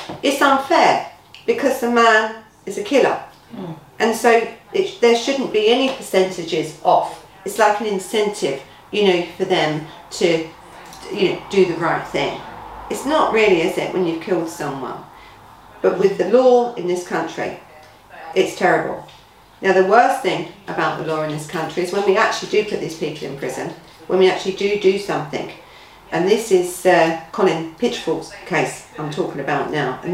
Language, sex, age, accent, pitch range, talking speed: English, female, 40-59, British, 175-230 Hz, 175 wpm